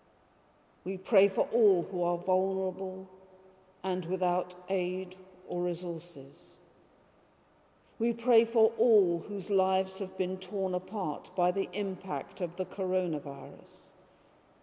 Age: 50-69